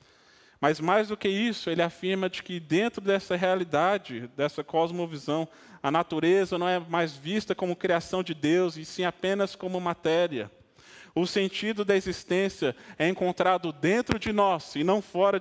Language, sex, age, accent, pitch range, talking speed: Portuguese, male, 20-39, Brazilian, 145-190 Hz, 160 wpm